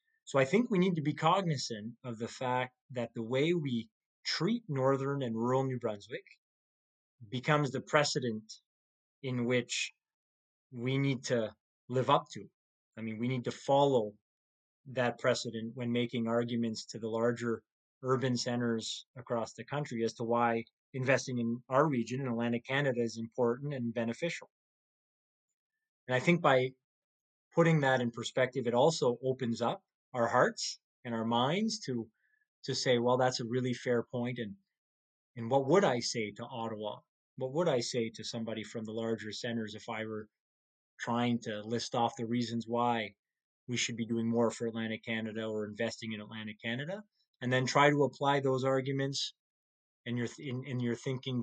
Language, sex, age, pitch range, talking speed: English, male, 30-49, 115-130 Hz, 165 wpm